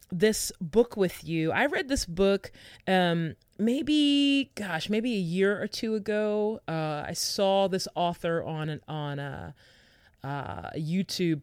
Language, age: English, 30-49